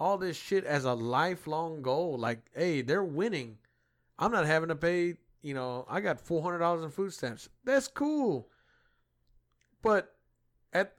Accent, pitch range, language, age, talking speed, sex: American, 130-175 Hz, English, 30-49, 165 wpm, male